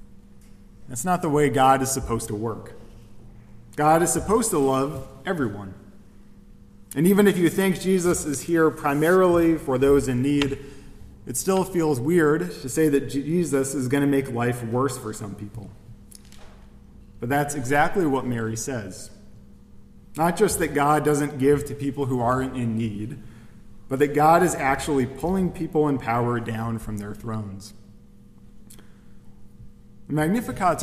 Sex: male